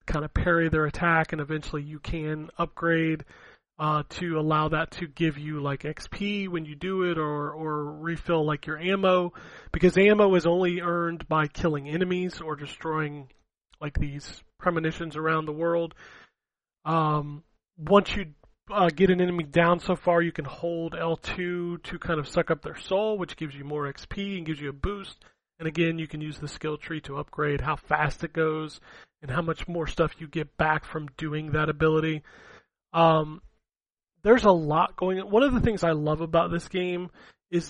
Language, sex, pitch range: English, male, 155-175 Hz